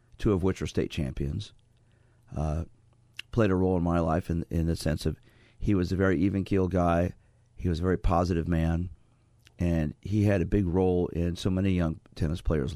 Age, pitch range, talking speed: 50-69, 90-115 Hz, 200 wpm